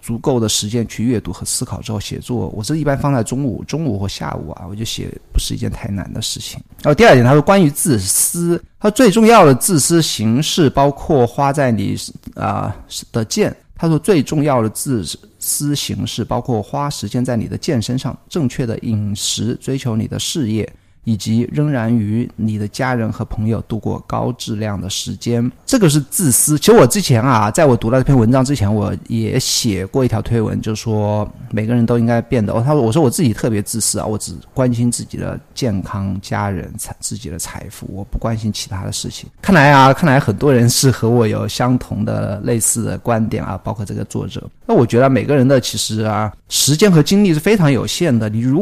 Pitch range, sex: 110-135 Hz, male